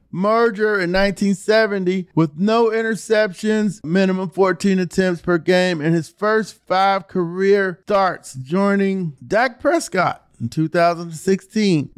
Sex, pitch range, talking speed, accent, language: male, 165-195 Hz, 110 wpm, American, English